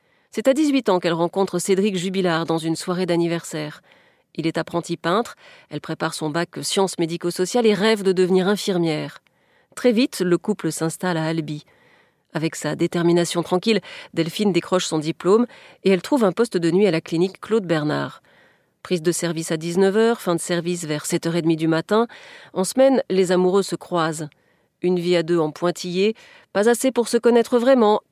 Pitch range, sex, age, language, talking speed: 165-210 Hz, female, 40-59, French, 180 wpm